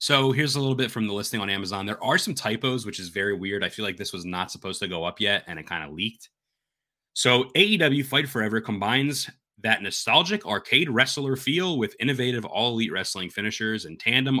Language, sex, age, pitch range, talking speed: English, male, 30-49, 100-155 Hz, 215 wpm